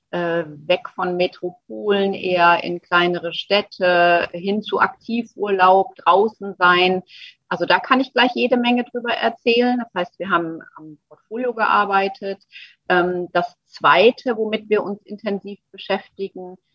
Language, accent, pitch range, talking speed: German, German, 170-215 Hz, 125 wpm